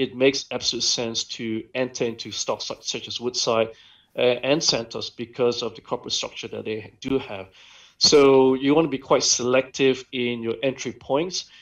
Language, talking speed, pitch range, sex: English, 180 wpm, 115-130 Hz, male